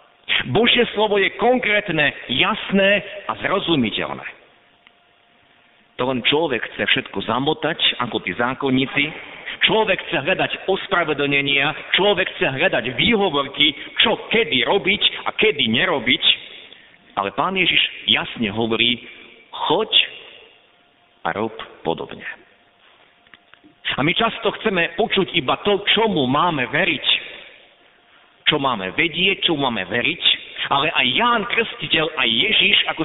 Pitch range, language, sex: 145-210 Hz, Slovak, male